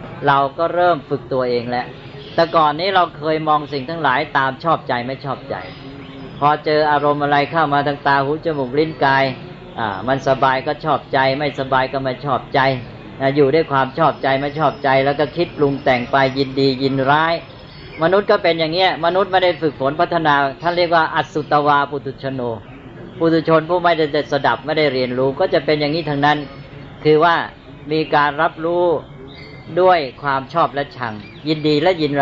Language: Thai